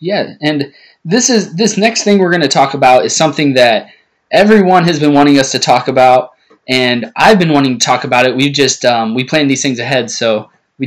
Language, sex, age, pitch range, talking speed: English, male, 20-39, 130-165 Hz, 225 wpm